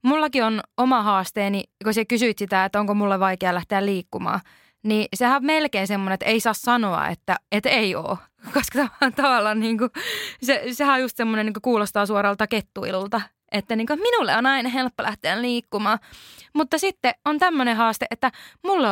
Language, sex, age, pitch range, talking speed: Finnish, female, 20-39, 200-255 Hz, 170 wpm